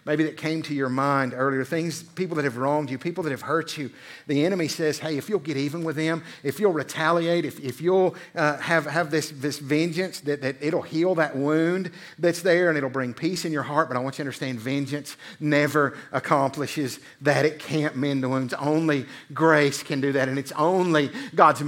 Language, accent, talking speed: English, American, 220 wpm